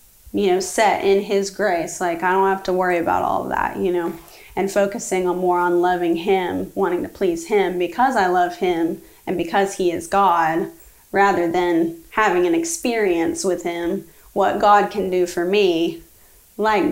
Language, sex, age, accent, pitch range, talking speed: English, female, 20-39, American, 175-215 Hz, 185 wpm